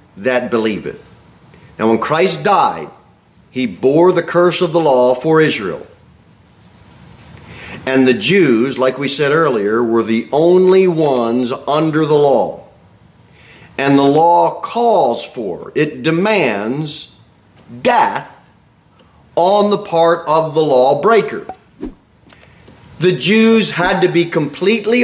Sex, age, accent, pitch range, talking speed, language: male, 40-59, American, 145-195 Hz, 115 wpm, English